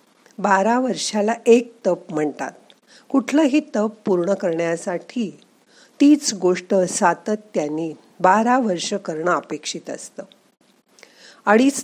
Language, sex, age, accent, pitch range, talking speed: Marathi, female, 50-69, native, 180-245 Hz, 90 wpm